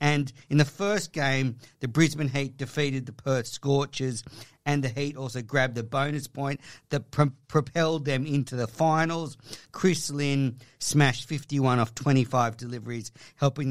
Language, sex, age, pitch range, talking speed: English, male, 50-69, 125-150 Hz, 150 wpm